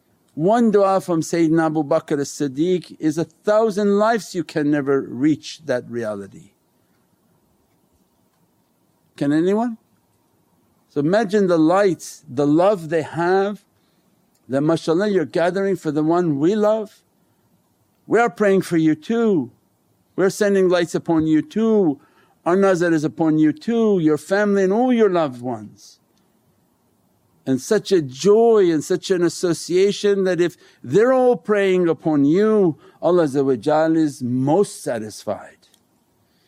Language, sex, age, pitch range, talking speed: English, male, 50-69, 140-190 Hz, 130 wpm